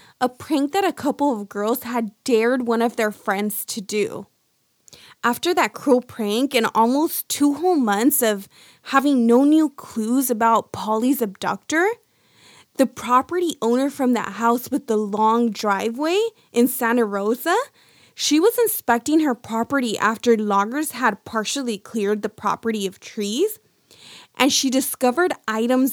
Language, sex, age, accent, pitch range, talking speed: English, female, 20-39, American, 220-280 Hz, 145 wpm